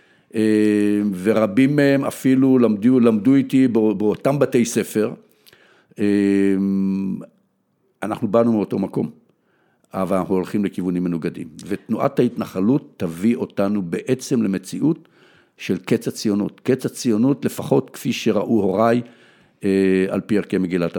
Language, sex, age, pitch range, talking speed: Hebrew, male, 60-79, 95-125 Hz, 105 wpm